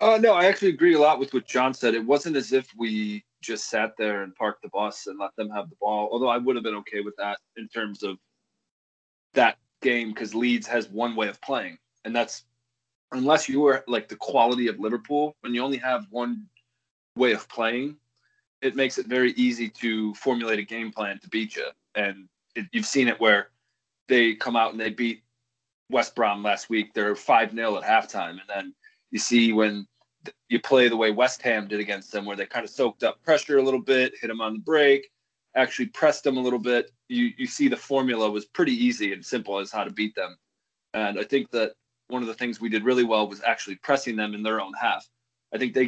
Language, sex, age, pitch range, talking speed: English, male, 20-39, 110-135 Hz, 225 wpm